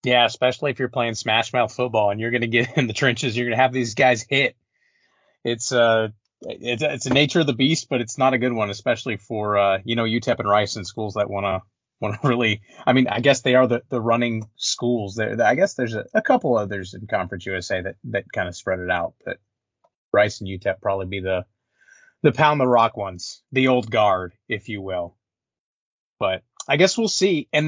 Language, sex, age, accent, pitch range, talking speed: English, male, 30-49, American, 115-150 Hz, 230 wpm